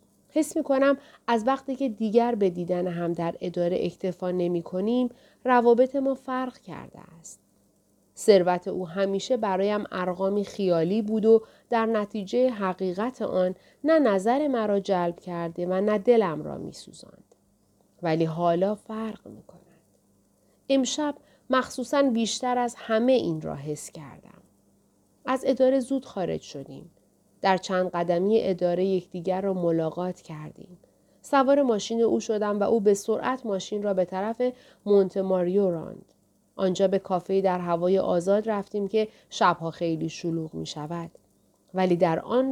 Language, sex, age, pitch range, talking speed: Persian, female, 40-59, 180-245 Hz, 140 wpm